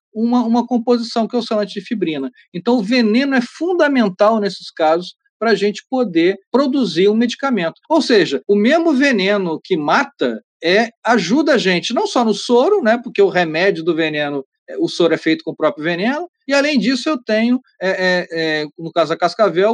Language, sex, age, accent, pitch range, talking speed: Portuguese, male, 40-59, Brazilian, 170-250 Hz, 180 wpm